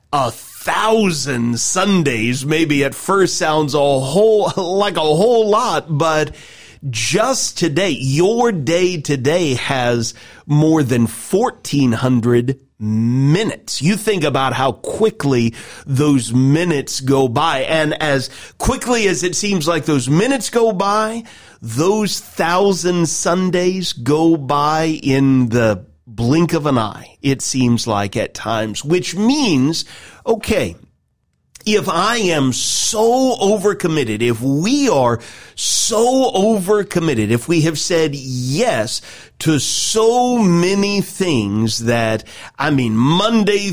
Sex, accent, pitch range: male, American, 135-195 Hz